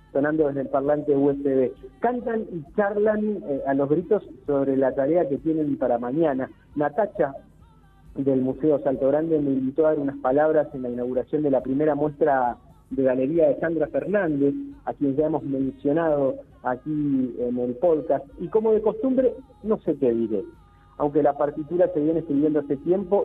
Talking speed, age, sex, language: 175 wpm, 50-69, male, Spanish